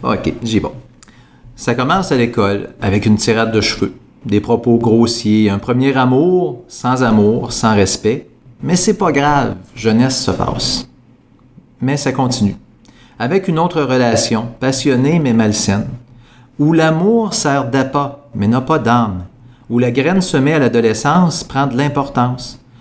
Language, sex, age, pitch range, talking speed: French, male, 40-59, 115-145 Hz, 150 wpm